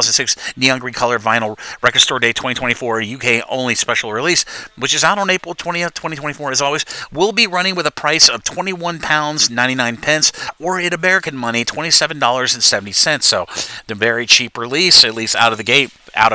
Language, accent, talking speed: English, American, 185 wpm